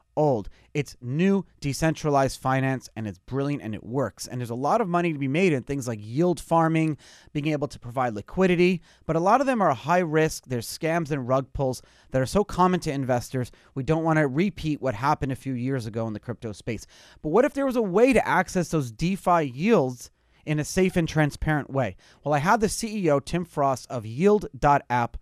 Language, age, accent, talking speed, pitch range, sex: English, 30-49, American, 215 wpm, 130-175 Hz, male